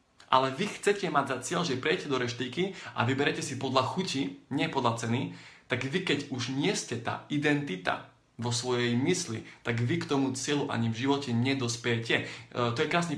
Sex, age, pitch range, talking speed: male, 20-39, 120-145 Hz, 190 wpm